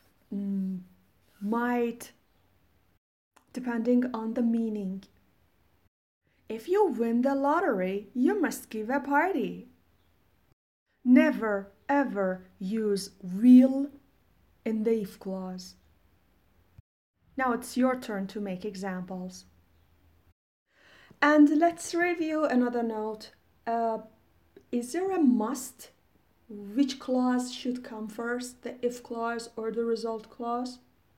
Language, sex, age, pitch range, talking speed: Persian, female, 30-49, 195-250 Hz, 100 wpm